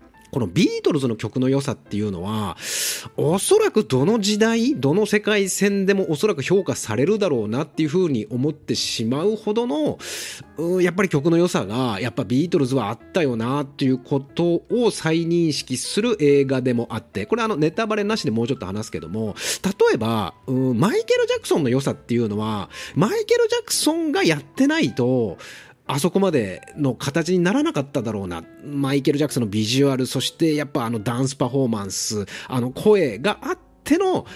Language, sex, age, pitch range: Japanese, male, 30-49, 125-210 Hz